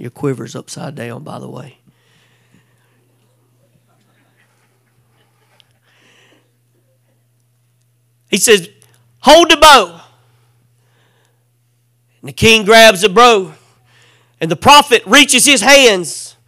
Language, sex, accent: English, male, American